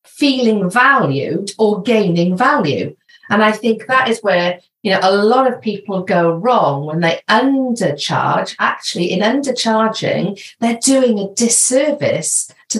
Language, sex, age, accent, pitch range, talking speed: English, female, 40-59, British, 175-235 Hz, 140 wpm